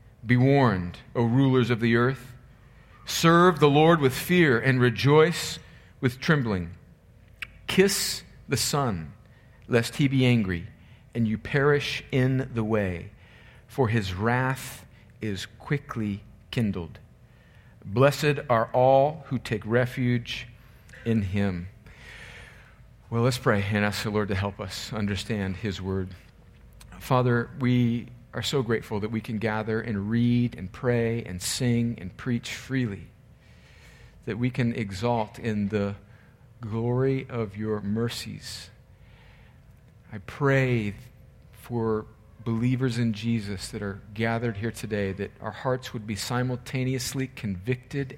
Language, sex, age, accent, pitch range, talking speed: English, male, 50-69, American, 110-130 Hz, 125 wpm